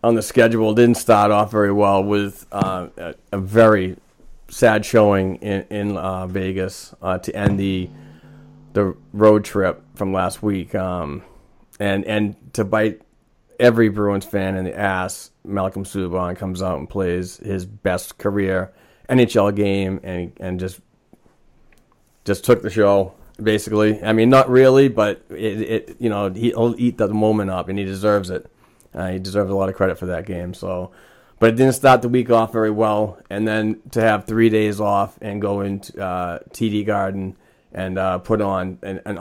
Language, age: English, 30-49